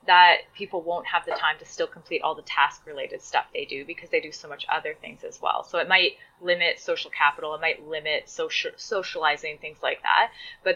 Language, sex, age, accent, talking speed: English, female, 20-39, American, 220 wpm